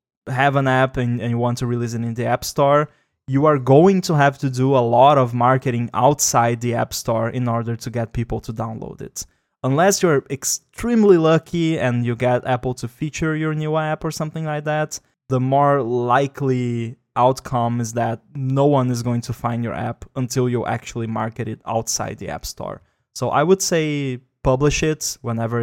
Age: 20-39